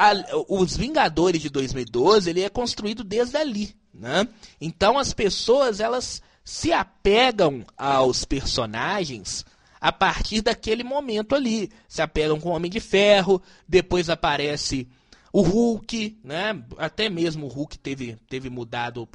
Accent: Brazilian